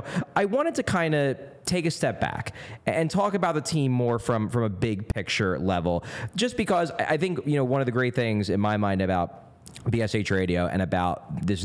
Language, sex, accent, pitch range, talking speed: English, male, American, 100-135 Hz, 210 wpm